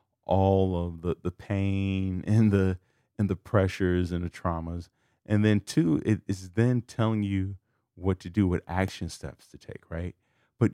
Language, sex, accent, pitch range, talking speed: English, male, American, 85-110 Hz, 175 wpm